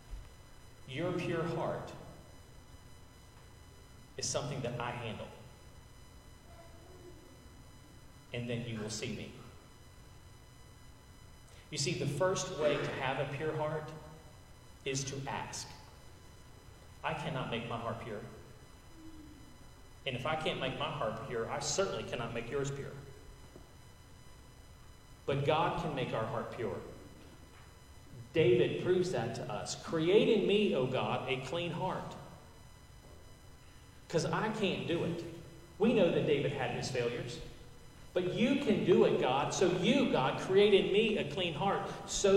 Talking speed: 135 wpm